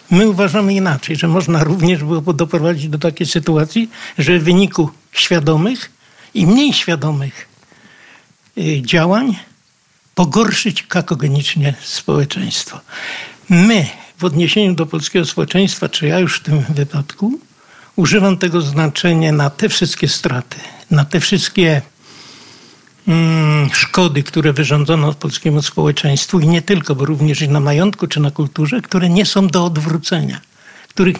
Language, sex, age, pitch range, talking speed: Polish, male, 60-79, 150-190 Hz, 125 wpm